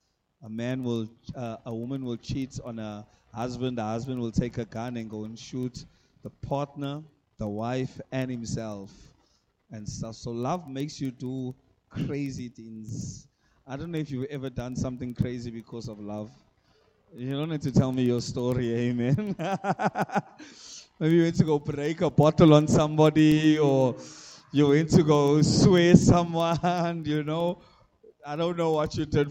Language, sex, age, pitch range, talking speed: English, male, 30-49, 125-160 Hz, 170 wpm